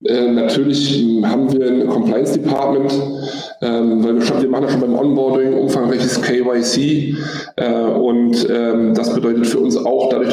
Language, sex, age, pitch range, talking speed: German, male, 20-39, 115-135 Hz, 170 wpm